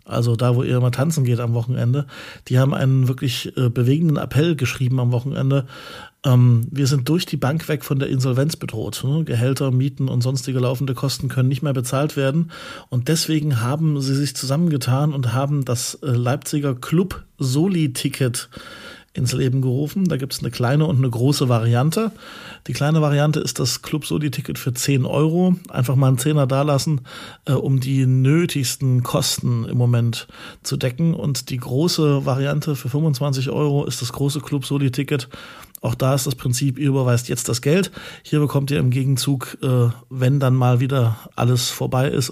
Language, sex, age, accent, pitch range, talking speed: German, male, 40-59, German, 125-145 Hz, 165 wpm